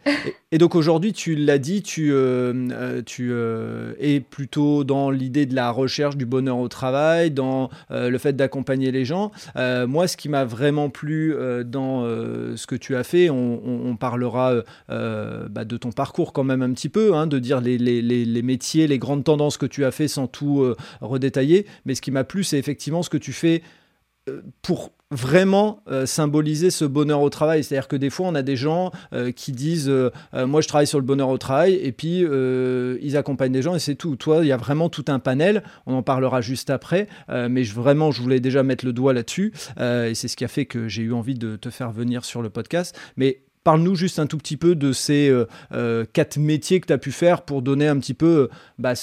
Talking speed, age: 240 wpm, 30-49